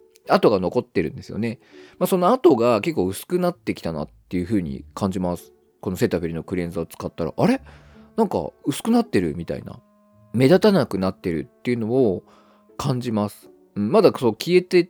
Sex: male